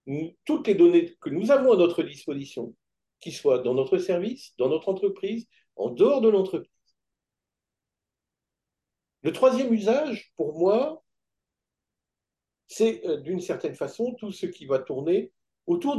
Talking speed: 135 wpm